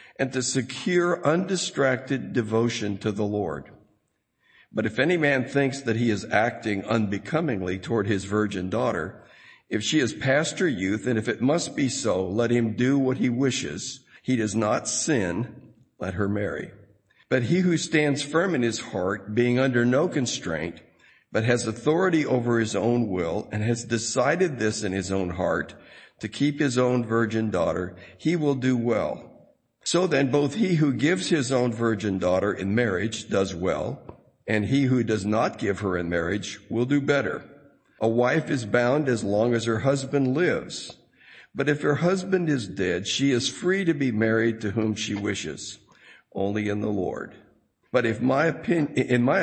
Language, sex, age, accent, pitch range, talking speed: English, male, 60-79, American, 105-140 Hz, 175 wpm